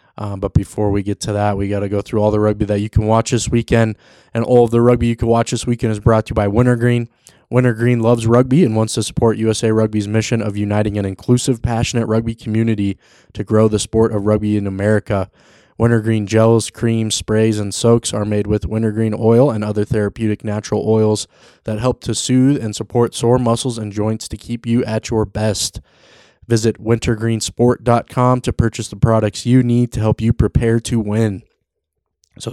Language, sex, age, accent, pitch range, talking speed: English, male, 20-39, American, 105-120 Hz, 200 wpm